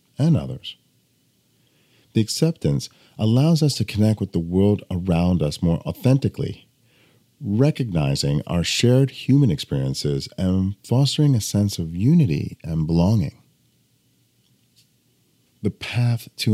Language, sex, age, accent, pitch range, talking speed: English, male, 40-59, American, 80-130 Hz, 115 wpm